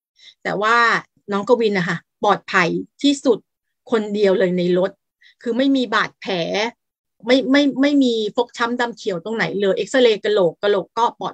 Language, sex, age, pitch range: Thai, female, 30-49, 205-255 Hz